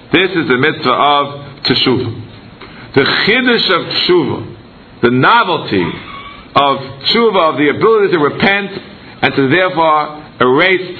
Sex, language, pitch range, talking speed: male, English, 135-195 Hz, 125 wpm